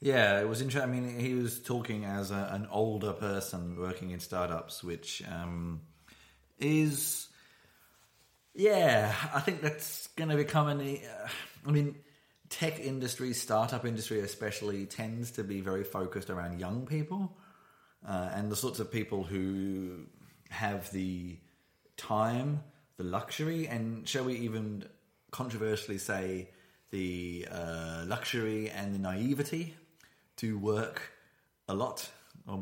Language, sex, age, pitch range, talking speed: English, male, 30-49, 95-125 Hz, 130 wpm